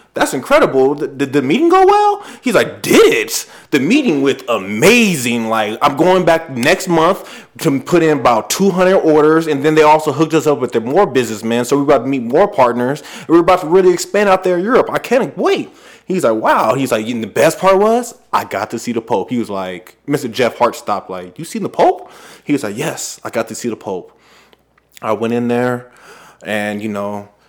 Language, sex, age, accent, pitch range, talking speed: English, male, 20-39, American, 110-150 Hz, 225 wpm